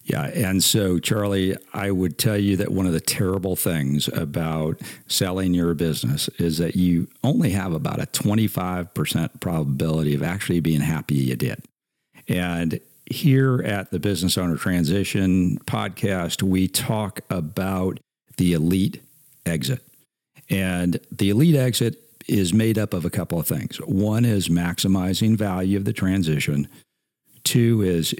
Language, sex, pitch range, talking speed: English, male, 90-110 Hz, 145 wpm